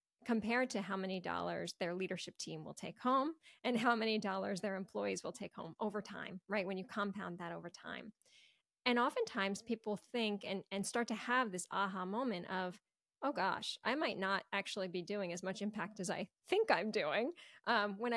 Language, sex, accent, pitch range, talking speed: English, female, American, 185-225 Hz, 200 wpm